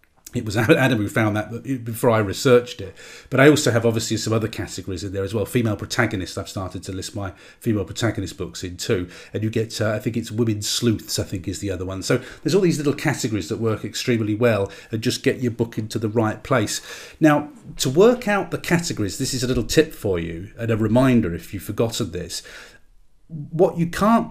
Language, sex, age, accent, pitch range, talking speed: English, male, 40-59, British, 105-130 Hz, 225 wpm